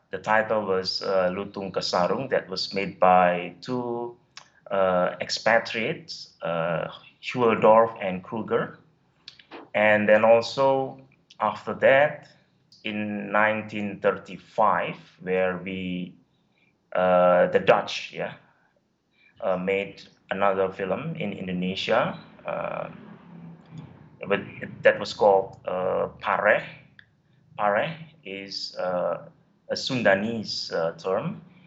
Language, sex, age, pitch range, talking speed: English, male, 30-49, 95-125 Hz, 95 wpm